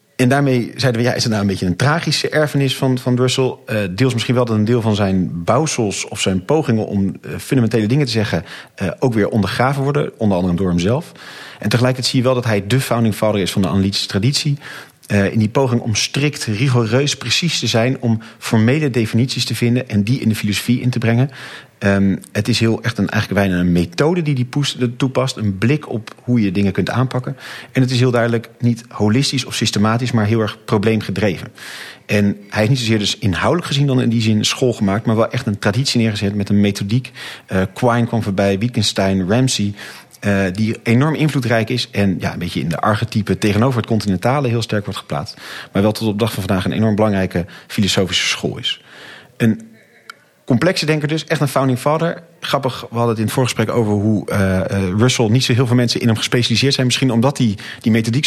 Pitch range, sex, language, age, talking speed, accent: 100-130 Hz, male, Dutch, 40-59, 215 wpm, Dutch